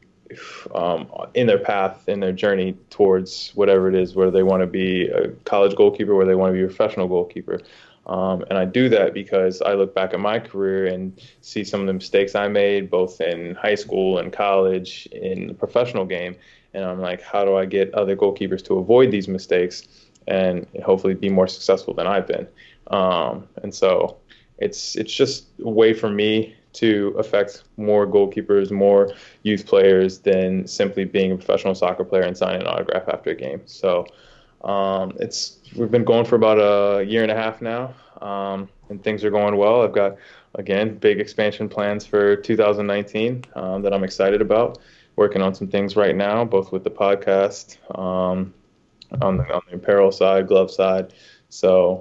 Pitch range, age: 95-105 Hz, 20-39